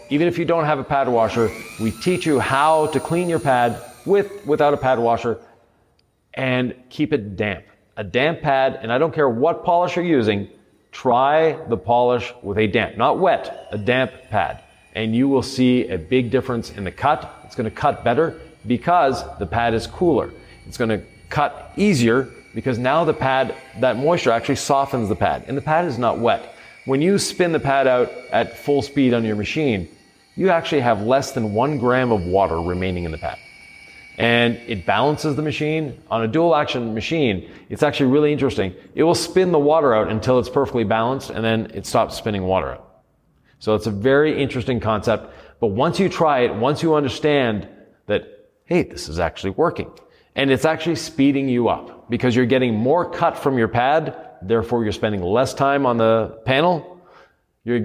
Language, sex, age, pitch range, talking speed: English, male, 40-59, 110-150 Hz, 195 wpm